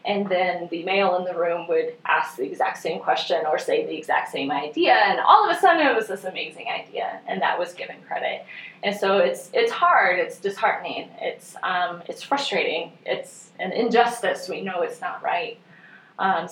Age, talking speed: 20-39, 195 wpm